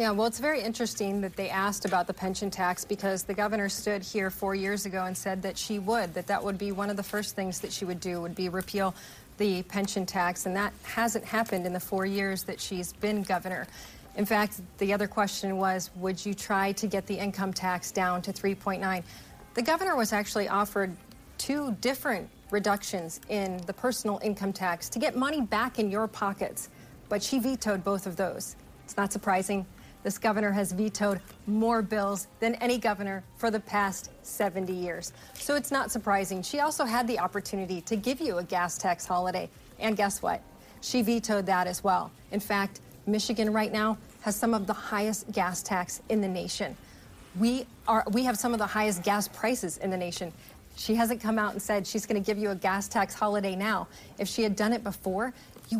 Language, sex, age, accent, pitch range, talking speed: English, female, 30-49, American, 190-220 Hz, 205 wpm